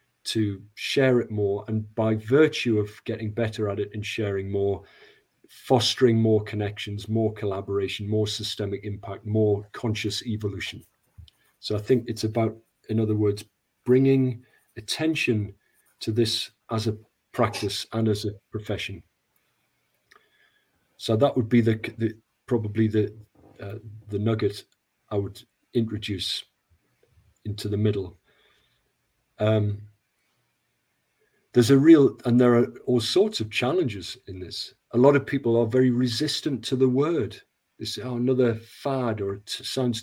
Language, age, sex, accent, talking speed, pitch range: English, 40-59, male, British, 140 wpm, 105-125 Hz